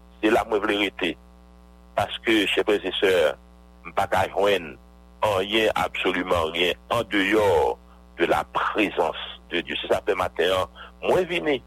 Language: English